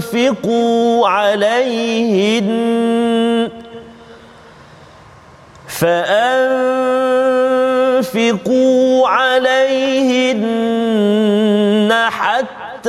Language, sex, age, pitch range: Malayalam, male, 40-59, 205-235 Hz